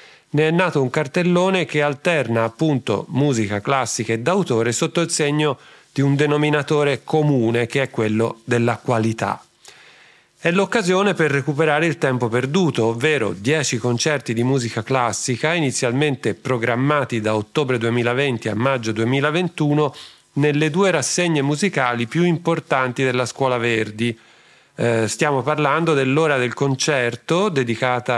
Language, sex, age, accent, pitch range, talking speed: Italian, male, 40-59, native, 120-155 Hz, 130 wpm